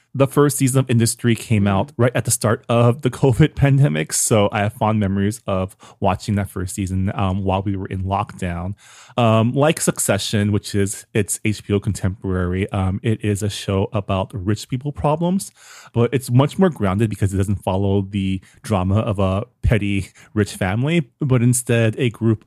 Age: 20-39